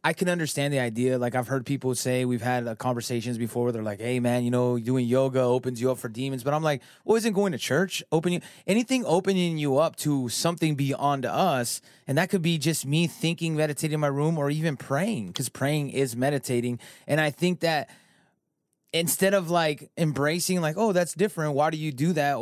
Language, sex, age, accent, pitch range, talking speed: English, male, 20-39, American, 135-170 Hz, 210 wpm